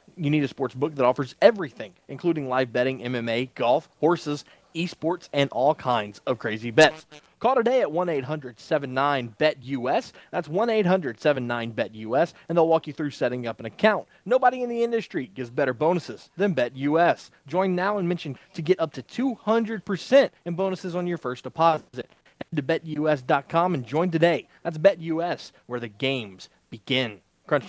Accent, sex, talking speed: American, male, 160 wpm